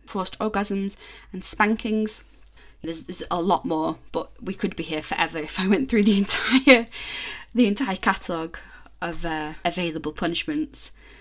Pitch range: 160-215 Hz